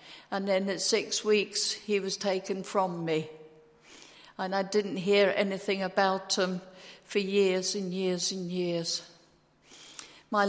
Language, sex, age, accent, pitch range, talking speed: English, female, 60-79, British, 185-205 Hz, 135 wpm